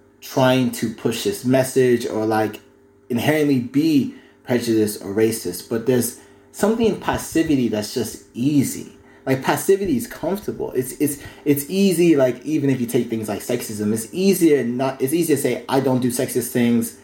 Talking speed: 170 wpm